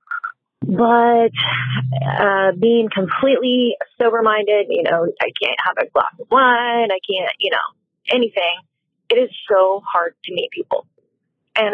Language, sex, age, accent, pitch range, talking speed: English, female, 30-49, American, 185-235 Hz, 140 wpm